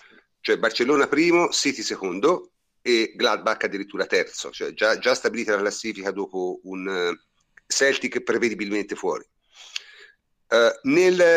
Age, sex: 50-69, male